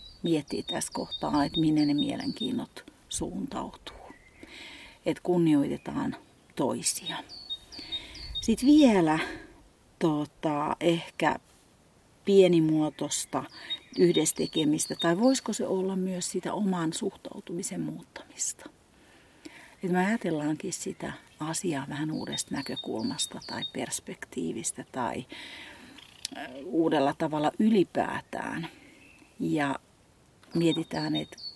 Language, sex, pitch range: Finnish, female, 155-225 Hz